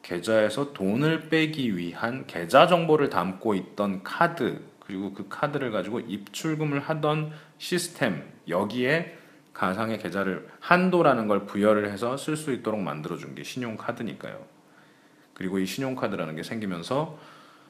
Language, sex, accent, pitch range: Korean, male, native, 105-160 Hz